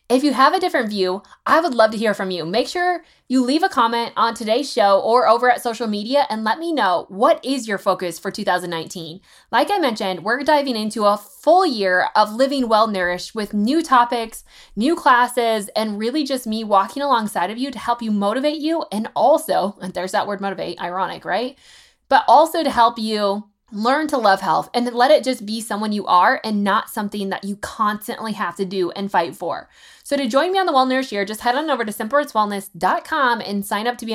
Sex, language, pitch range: female, English, 200-260 Hz